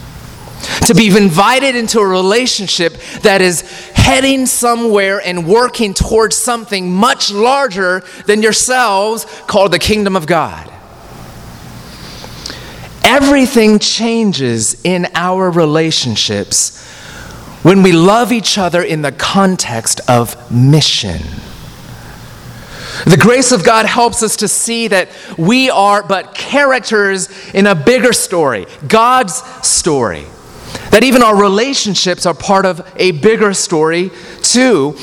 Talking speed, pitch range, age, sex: 115 wpm, 175-235 Hz, 30-49, male